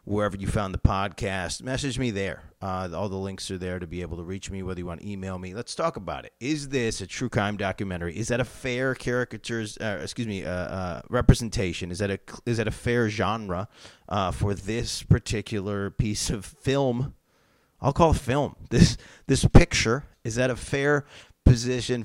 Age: 30-49